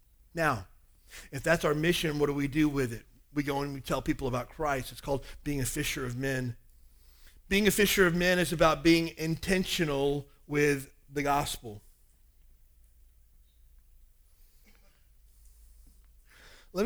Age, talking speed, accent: 40-59, 140 wpm, American